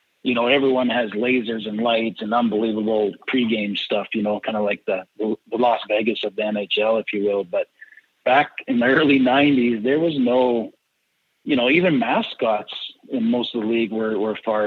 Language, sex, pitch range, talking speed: English, male, 105-125 Hz, 190 wpm